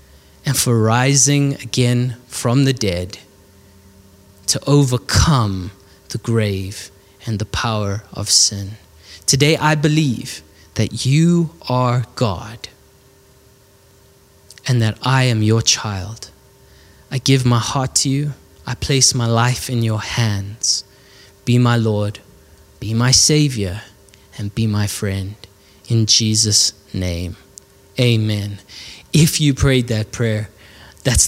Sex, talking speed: male, 120 wpm